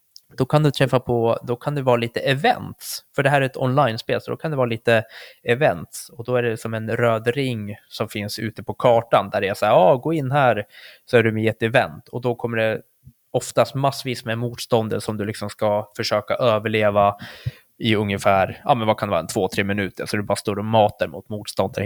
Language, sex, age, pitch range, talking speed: Swedish, male, 20-39, 110-150 Hz, 240 wpm